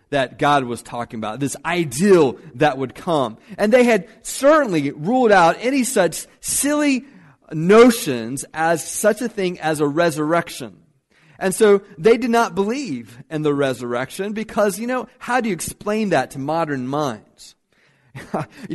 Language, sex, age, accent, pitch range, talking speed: English, male, 40-59, American, 165-230 Hz, 155 wpm